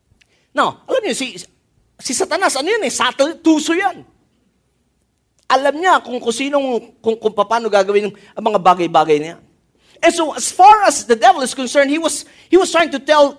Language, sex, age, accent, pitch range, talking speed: English, male, 40-59, Filipino, 250-345 Hz, 170 wpm